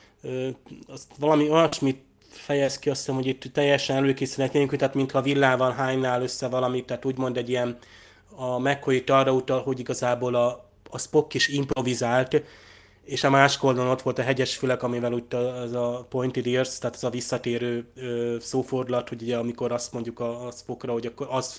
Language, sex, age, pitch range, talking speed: Hungarian, male, 20-39, 120-135 Hz, 175 wpm